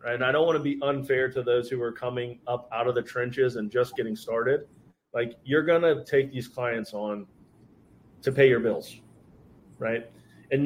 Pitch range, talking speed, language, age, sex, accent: 115-140 Hz, 205 wpm, English, 30-49, male, American